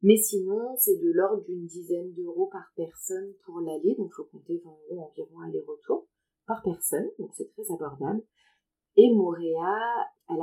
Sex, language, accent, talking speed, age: female, French, French, 155 wpm, 30-49